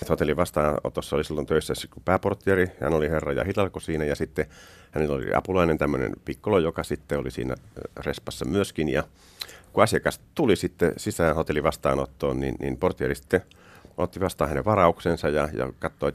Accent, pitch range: native, 65-90 Hz